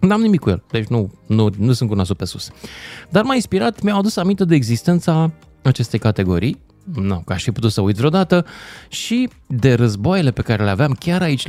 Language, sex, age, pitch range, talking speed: Romanian, male, 30-49, 100-145 Hz, 195 wpm